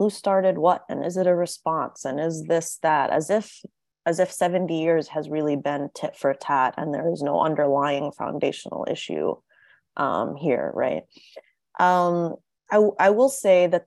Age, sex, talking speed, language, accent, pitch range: 20-39, female, 175 wpm, English, American, 155-180 Hz